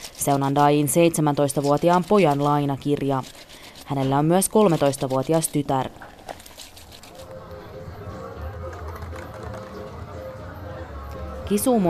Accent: native